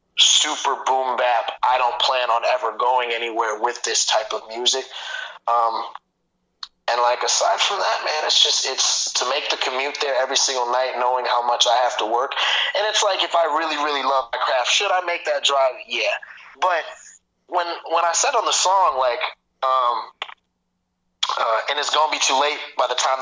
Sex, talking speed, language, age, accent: male, 200 wpm, English, 20-39, American